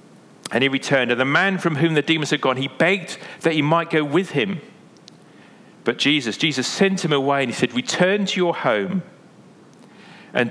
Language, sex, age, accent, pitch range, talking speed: English, male, 40-59, British, 130-170 Hz, 195 wpm